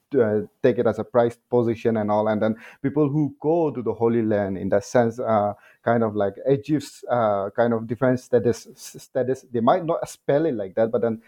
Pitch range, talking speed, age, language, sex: 120-155 Hz, 220 wpm, 30-49, English, male